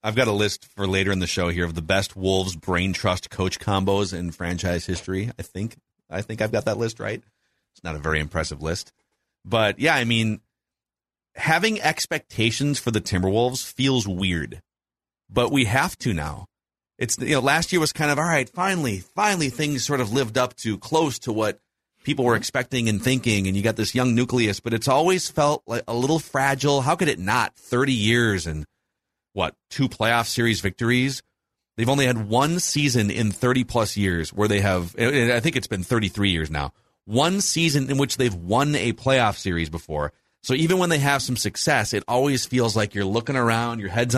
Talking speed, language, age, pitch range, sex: 200 wpm, English, 30-49, 100-135 Hz, male